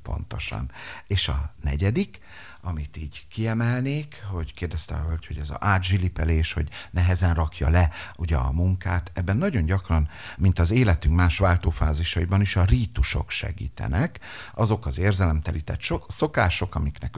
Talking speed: 135 wpm